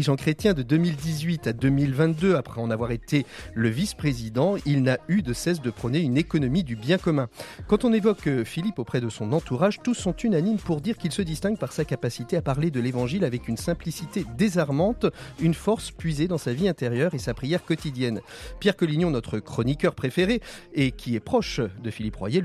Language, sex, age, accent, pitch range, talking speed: French, male, 30-49, French, 125-175 Hz, 200 wpm